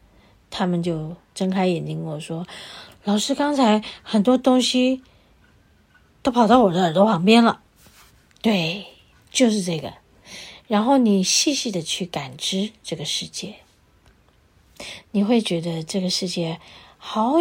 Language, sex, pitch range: Chinese, female, 165-230 Hz